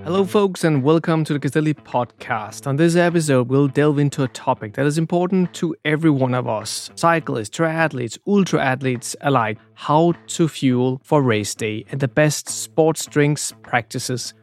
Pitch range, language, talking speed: 125-150 Hz, English, 170 wpm